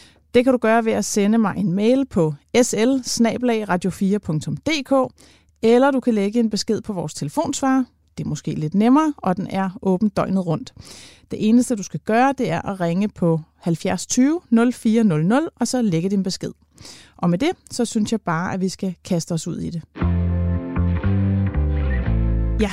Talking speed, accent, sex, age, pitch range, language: 180 wpm, native, female, 30-49, 175-230 Hz, Danish